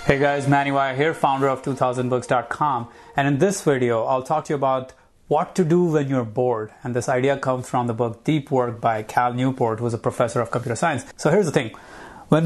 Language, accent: English, Indian